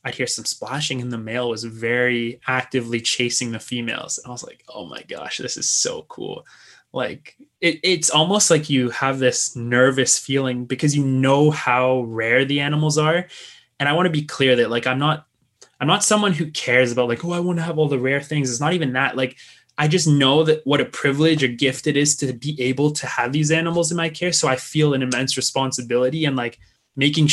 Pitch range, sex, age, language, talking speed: 125-150 Hz, male, 20-39, English, 225 wpm